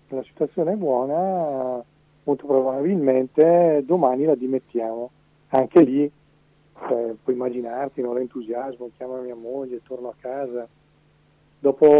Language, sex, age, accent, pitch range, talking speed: Italian, male, 40-59, native, 125-145 Hz, 120 wpm